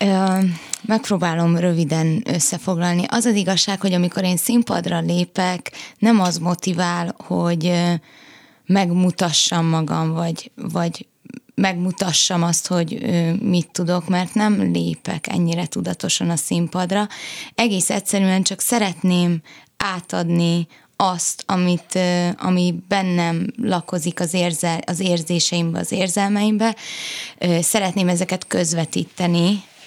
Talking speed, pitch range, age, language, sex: 95 wpm, 170-195 Hz, 20-39, Hungarian, female